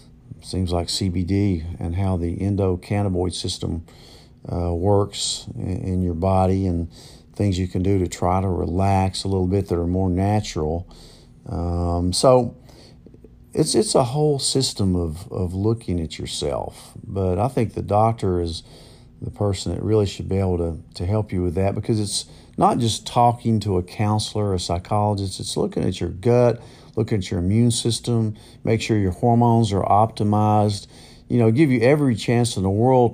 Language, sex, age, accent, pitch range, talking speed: English, male, 50-69, American, 90-115 Hz, 175 wpm